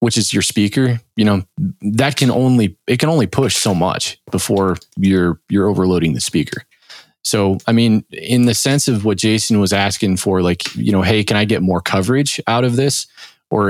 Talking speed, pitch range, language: 200 wpm, 95-115 Hz, English